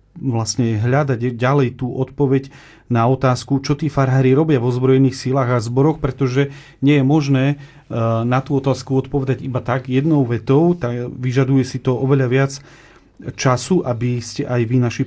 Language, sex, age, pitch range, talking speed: Slovak, male, 40-59, 120-140 Hz, 160 wpm